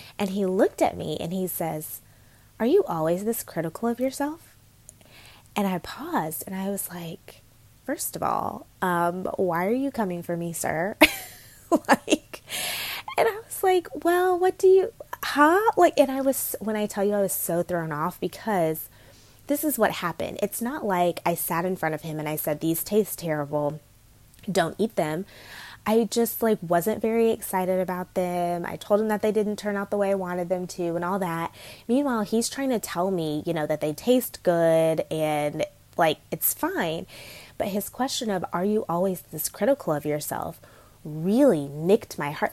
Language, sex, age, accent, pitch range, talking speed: English, female, 20-39, American, 155-215 Hz, 190 wpm